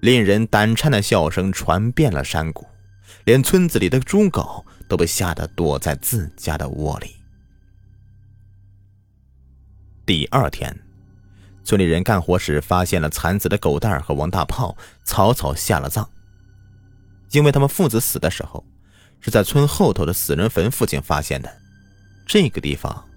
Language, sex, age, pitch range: Chinese, male, 30-49, 85-110 Hz